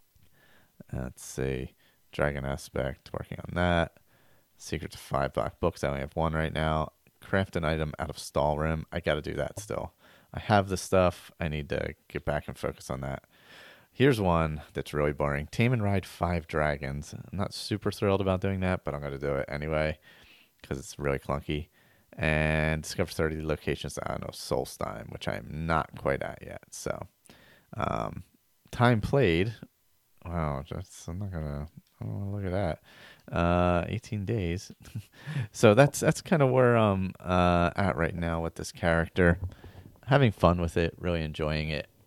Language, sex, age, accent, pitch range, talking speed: English, male, 30-49, American, 75-95 Hz, 175 wpm